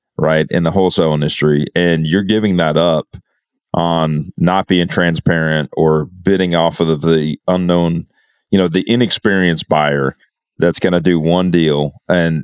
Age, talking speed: 40-59, 160 wpm